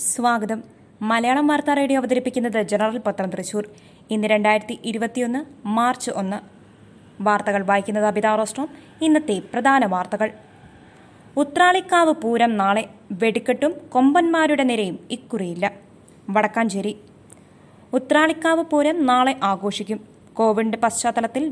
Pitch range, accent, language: 220-275 Hz, native, Malayalam